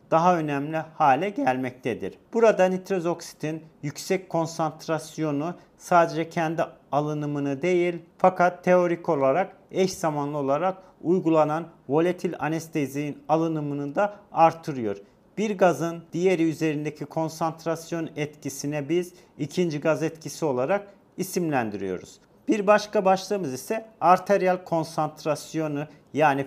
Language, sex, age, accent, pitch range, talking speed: Turkish, male, 40-59, native, 150-180 Hz, 100 wpm